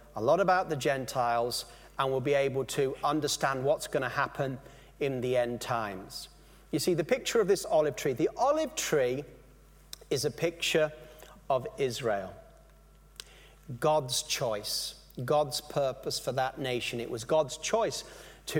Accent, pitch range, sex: British, 140-220 Hz, male